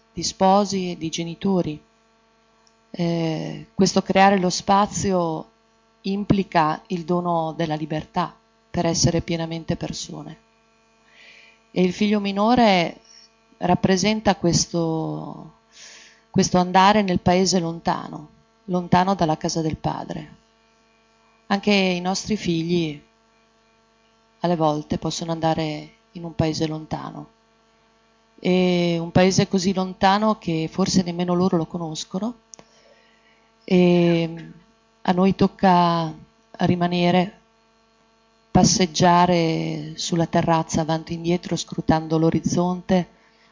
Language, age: Italian, 30-49